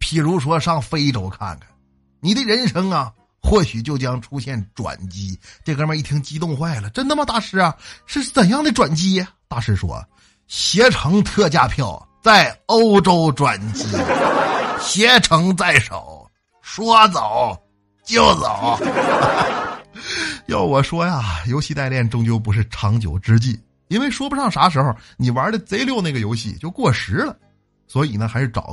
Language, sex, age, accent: Chinese, male, 50-69, native